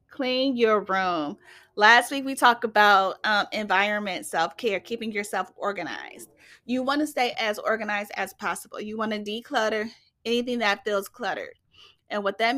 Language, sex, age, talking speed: English, female, 30-49, 160 wpm